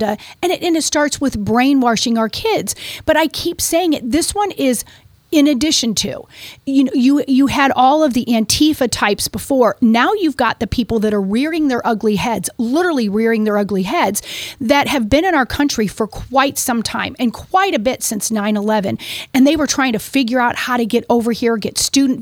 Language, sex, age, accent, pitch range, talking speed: English, female, 40-59, American, 230-300 Hz, 210 wpm